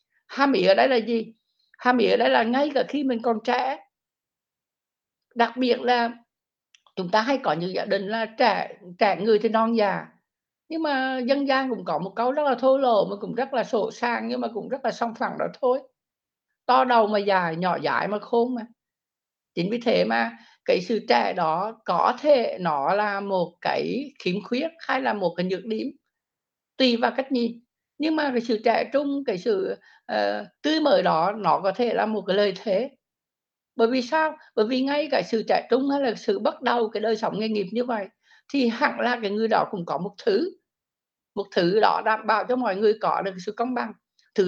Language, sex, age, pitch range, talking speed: Vietnamese, female, 60-79, 205-260 Hz, 215 wpm